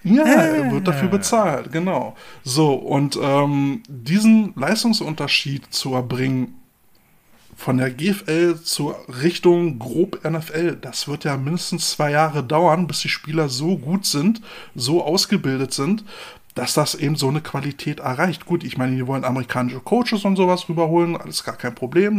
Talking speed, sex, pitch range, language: 150 wpm, male, 135-180 Hz, German